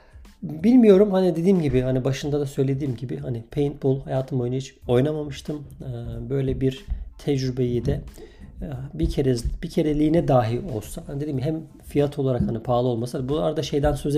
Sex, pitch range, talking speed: male, 125-155 Hz, 160 wpm